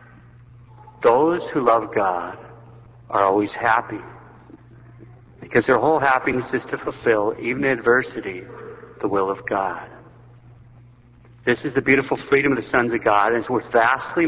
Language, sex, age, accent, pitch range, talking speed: English, male, 50-69, American, 115-135 Hz, 145 wpm